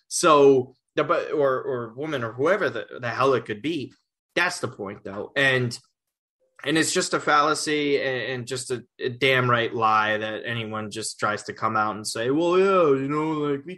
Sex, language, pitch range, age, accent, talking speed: male, English, 115-150 Hz, 20-39, American, 195 wpm